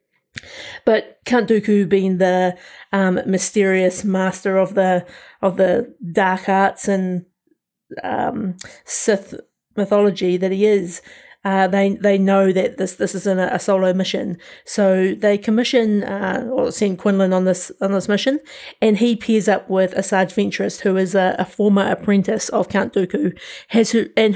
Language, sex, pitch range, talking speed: English, female, 190-220 Hz, 165 wpm